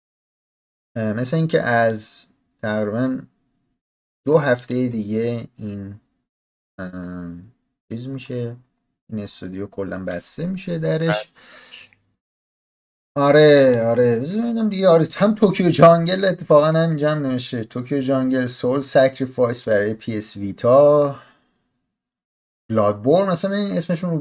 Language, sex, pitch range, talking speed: Persian, male, 100-145 Hz, 95 wpm